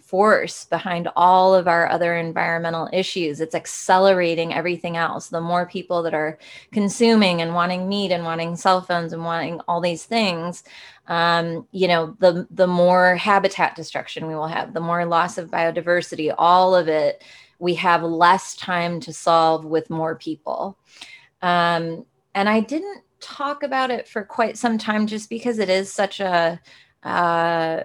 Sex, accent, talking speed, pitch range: female, American, 165 wpm, 170-195 Hz